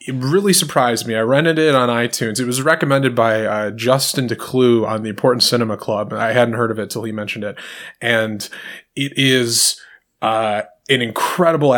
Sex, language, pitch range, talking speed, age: male, English, 115-140 Hz, 185 wpm, 20-39